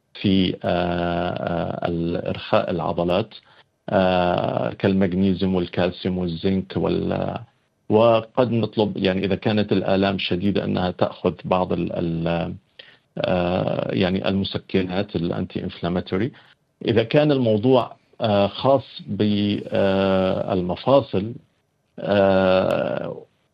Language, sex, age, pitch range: Arabic, male, 50-69, 90-110 Hz